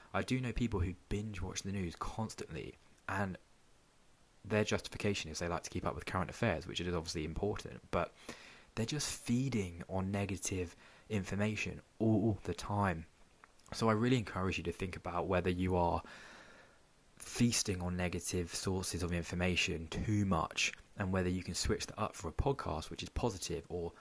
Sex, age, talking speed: male, 20-39, 170 wpm